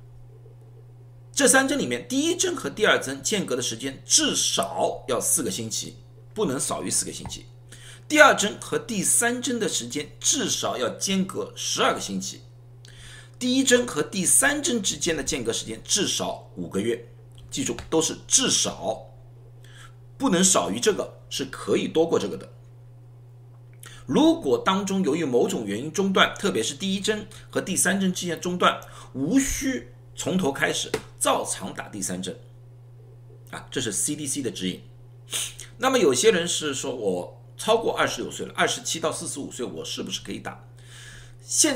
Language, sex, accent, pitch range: Chinese, male, native, 120-170 Hz